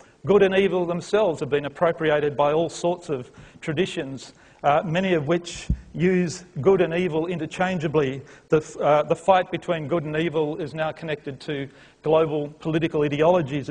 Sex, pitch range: male, 150-180 Hz